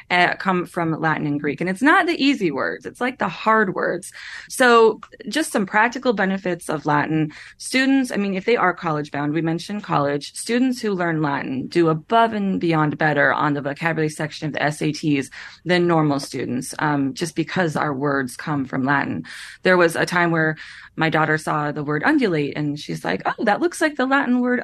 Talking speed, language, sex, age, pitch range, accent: 195 wpm, English, female, 20-39, 155-220 Hz, American